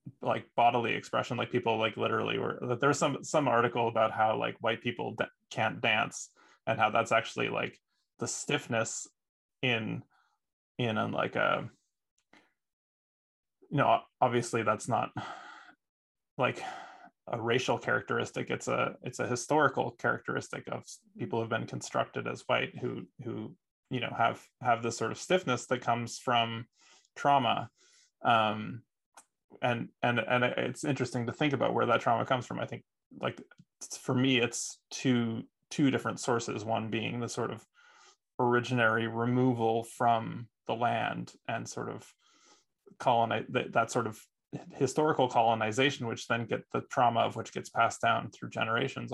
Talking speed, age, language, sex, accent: 155 wpm, 20-39, English, male, American